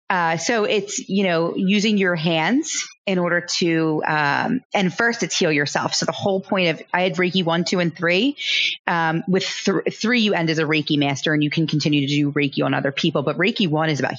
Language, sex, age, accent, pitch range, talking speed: English, female, 30-49, American, 155-190 Hz, 230 wpm